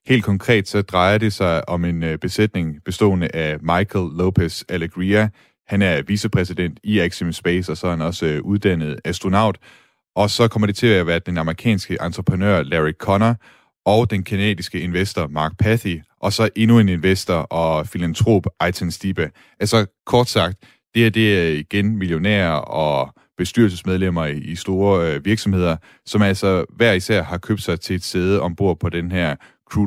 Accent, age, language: native, 30-49, Danish